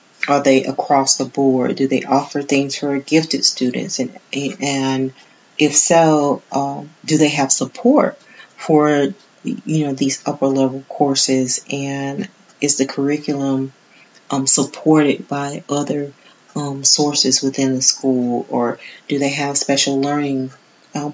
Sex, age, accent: female, 40-59, American